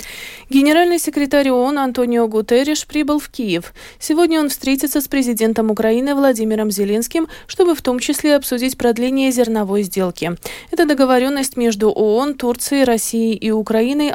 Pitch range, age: 220-285 Hz, 20-39